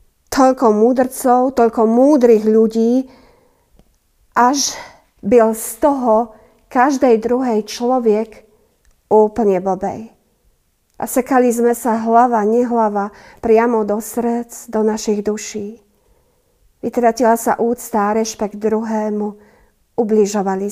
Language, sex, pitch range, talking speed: Slovak, female, 220-255 Hz, 95 wpm